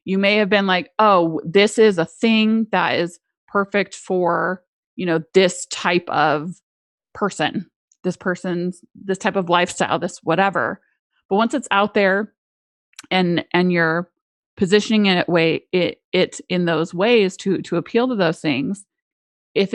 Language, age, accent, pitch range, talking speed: English, 30-49, American, 170-205 Hz, 155 wpm